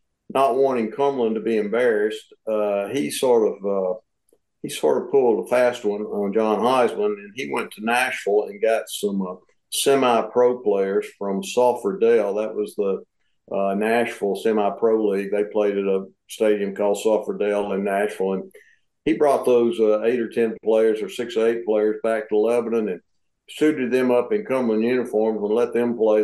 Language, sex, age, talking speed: English, male, 50-69, 180 wpm